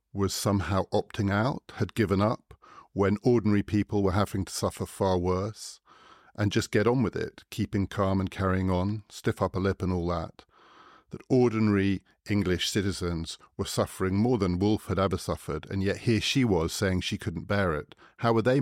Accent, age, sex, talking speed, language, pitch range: British, 50-69, male, 185 wpm, English, 85-105 Hz